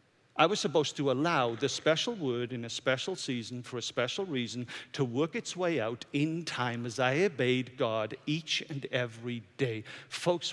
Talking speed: 180 wpm